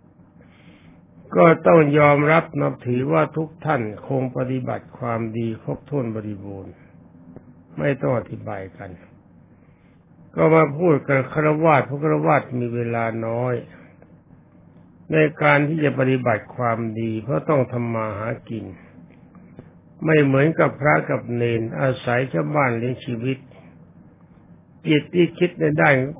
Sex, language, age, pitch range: male, Thai, 60-79, 115-150 Hz